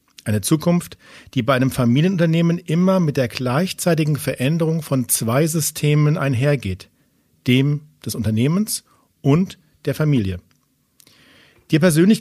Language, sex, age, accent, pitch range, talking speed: German, male, 50-69, German, 125-160 Hz, 115 wpm